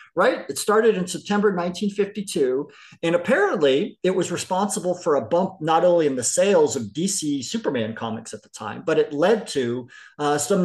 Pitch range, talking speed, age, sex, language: 135-200 Hz, 180 wpm, 50-69, male, English